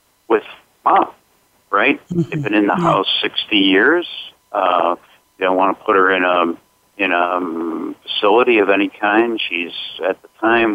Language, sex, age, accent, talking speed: English, male, 50-69, American, 160 wpm